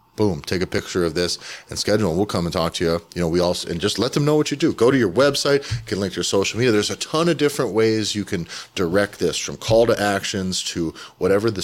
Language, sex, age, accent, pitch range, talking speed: English, male, 30-49, American, 85-110 Hz, 280 wpm